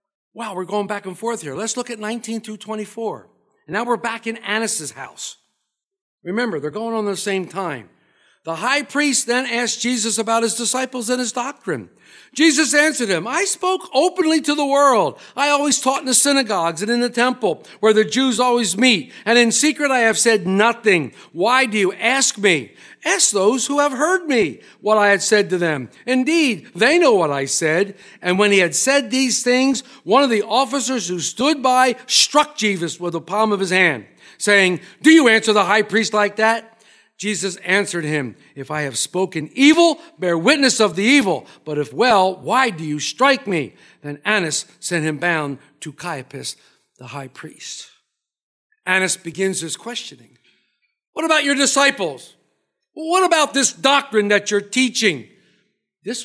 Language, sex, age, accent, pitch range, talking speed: English, male, 50-69, American, 195-275 Hz, 185 wpm